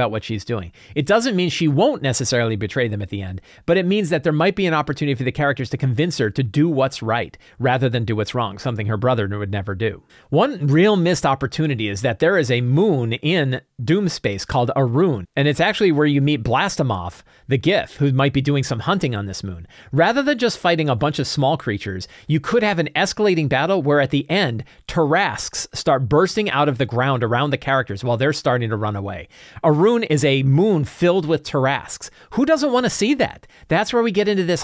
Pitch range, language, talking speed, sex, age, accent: 115-165 Hz, English, 230 wpm, male, 40-59, American